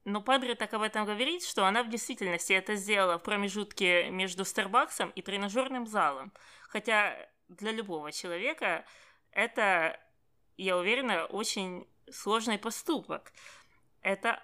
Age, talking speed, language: 20-39, 125 wpm, Russian